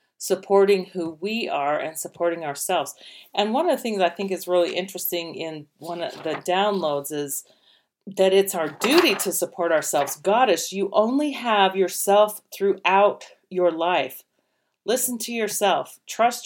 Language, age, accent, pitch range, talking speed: English, 40-59, American, 170-205 Hz, 155 wpm